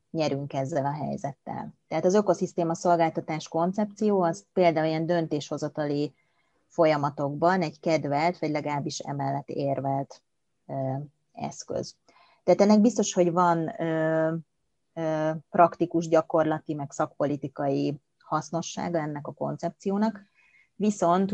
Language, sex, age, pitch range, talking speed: Hungarian, female, 30-49, 150-175 Hz, 100 wpm